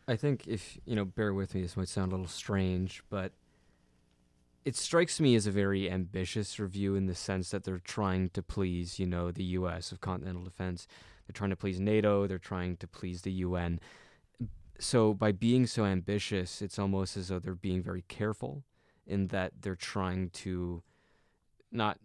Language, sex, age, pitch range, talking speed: English, male, 20-39, 90-100 Hz, 185 wpm